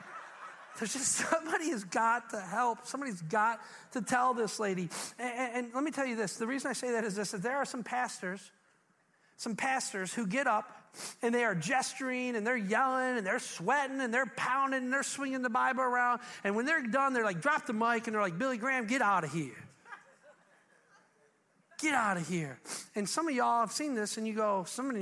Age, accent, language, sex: 40-59, American, English, male